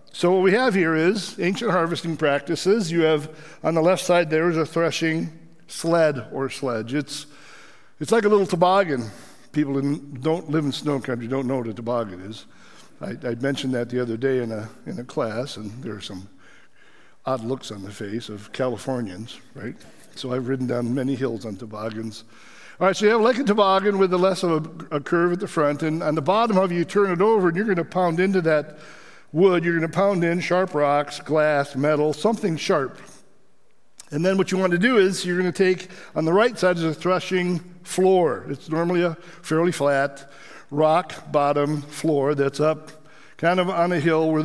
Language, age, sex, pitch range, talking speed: English, 60-79, male, 135-180 Hz, 210 wpm